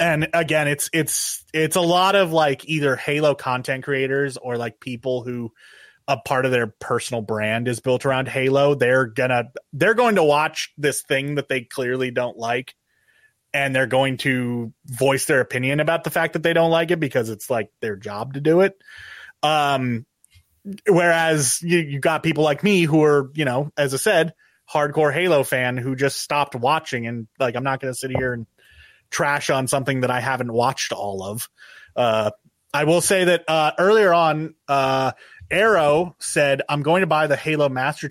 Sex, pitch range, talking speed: male, 125-160 Hz, 190 wpm